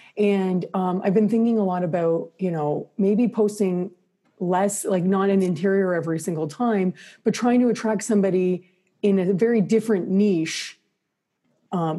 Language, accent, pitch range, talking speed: English, American, 165-205 Hz, 155 wpm